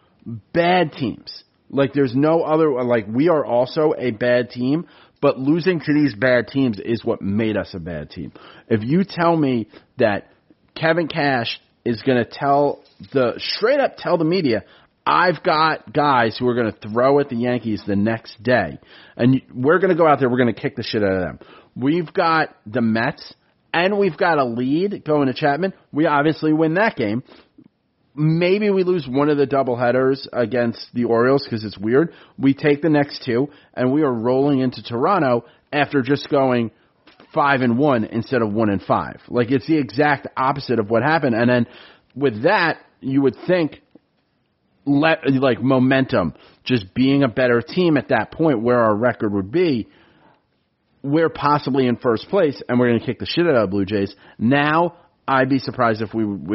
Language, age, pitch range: English, 30-49, 120-150 Hz